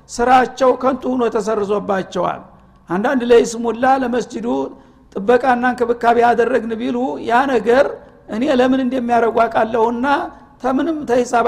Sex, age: male, 60-79